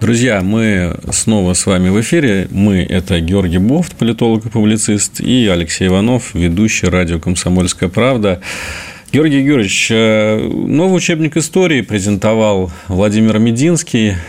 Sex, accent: male, native